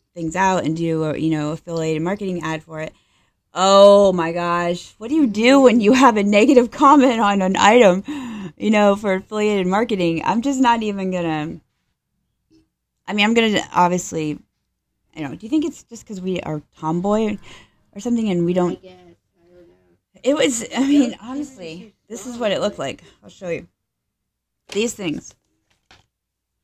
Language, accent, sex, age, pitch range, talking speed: English, American, female, 30-49, 170-240 Hz, 170 wpm